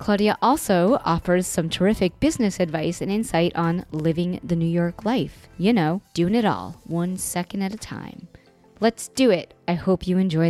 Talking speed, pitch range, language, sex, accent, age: 185 wpm, 160-195 Hz, English, female, American, 20-39